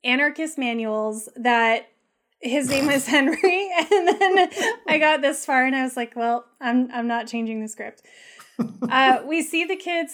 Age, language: 20-39, English